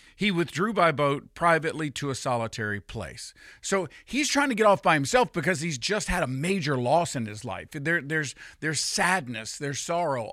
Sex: male